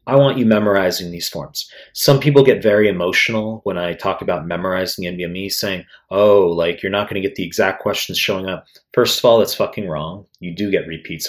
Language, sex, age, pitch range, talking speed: English, male, 30-49, 90-110 Hz, 215 wpm